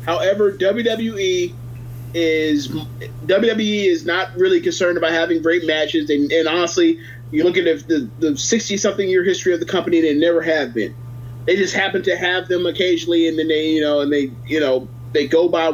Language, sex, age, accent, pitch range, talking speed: English, male, 30-49, American, 145-190 Hz, 190 wpm